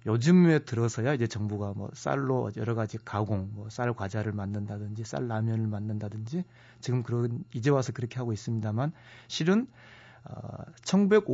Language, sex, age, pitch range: Korean, male, 30-49, 110-140 Hz